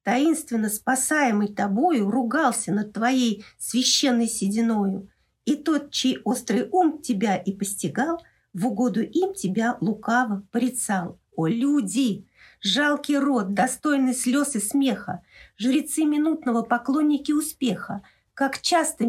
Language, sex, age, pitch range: Russian, female, 50-69, 200-255 Hz